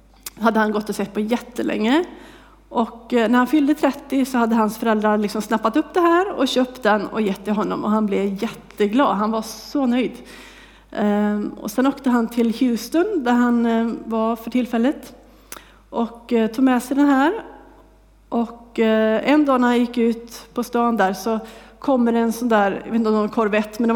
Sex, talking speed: female, 195 wpm